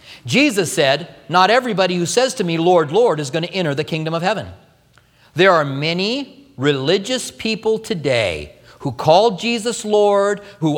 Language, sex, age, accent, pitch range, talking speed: English, male, 40-59, American, 160-225 Hz, 160 wpm